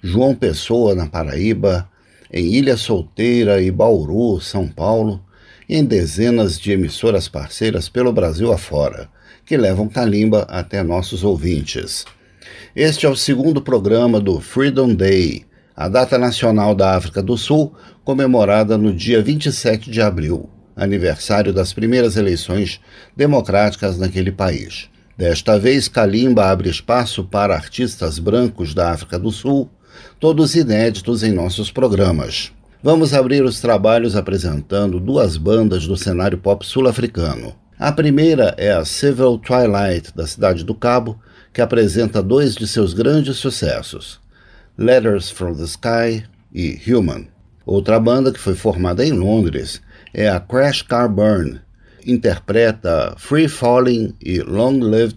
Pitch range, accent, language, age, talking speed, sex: 95-120 Hz, Brazilian, Portuguese, 50-69, 135 wpm, male